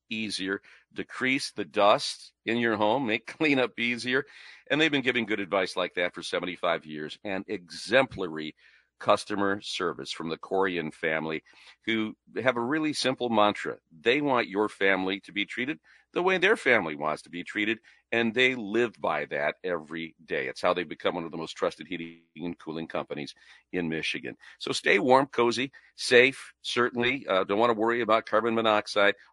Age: 50-69